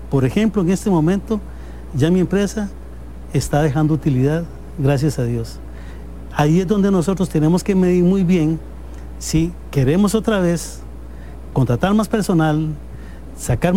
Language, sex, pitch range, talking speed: English, male, 130-175 Hz, 135 wpm